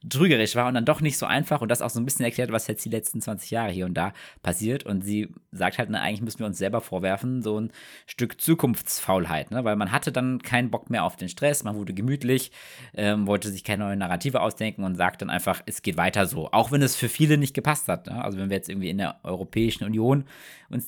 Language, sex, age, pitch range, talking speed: German, male, 20-39, 95-120 Hz, 245 wpm